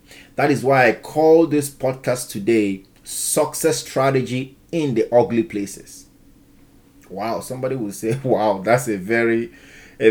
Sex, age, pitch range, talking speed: male, 30-49, 110-140 Hz, 135 wpm